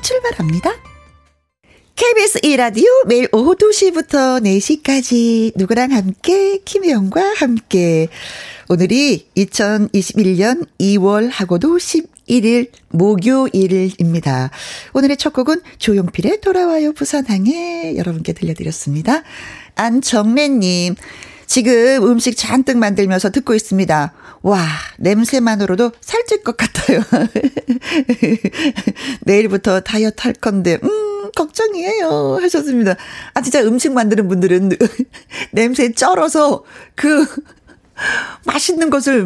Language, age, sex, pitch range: Korean, 40-59, female, 195-290 Hz